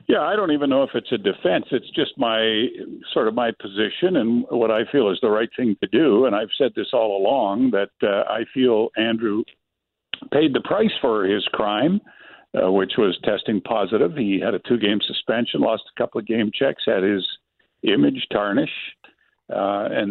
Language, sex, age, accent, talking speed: English, male, 60-79, American, 195 wpm